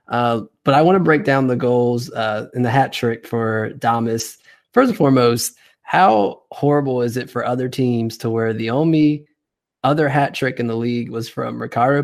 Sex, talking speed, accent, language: male, 195 wpm, American, English